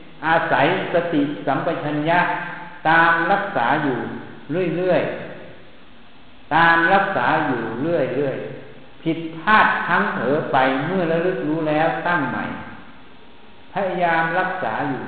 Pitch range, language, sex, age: 145-190 Hz, Thai, male, 60-79